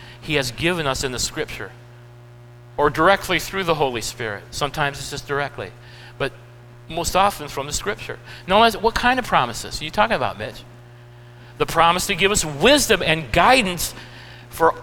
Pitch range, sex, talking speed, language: 120-190 Hz, male, 170 wpm, English